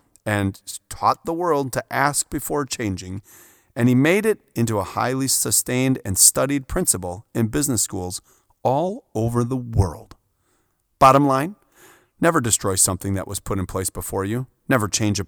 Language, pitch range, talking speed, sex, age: English, 100-135 Hz, 160 wpm, male, 30-49